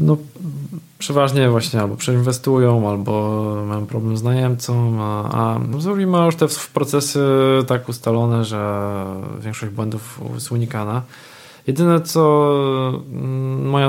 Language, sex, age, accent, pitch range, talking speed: Polish, male, 20-39, native, 115-140 Hz, 120 wpm